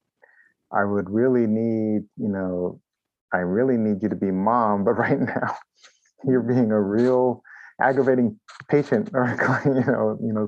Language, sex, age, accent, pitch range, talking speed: English, male, 30-49, American, 100-125 Hz, 155 wpm